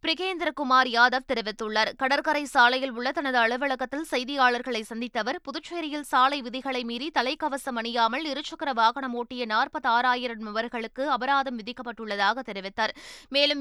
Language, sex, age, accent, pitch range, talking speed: Tamil, female, 20-39, native, 235-280 Hz, 110 wpm